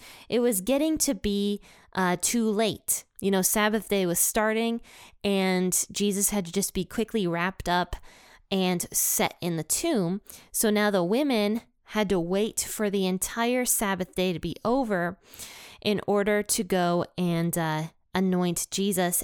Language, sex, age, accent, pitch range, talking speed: English, female, 20-39, American, 180-225 Hz, 160 wpm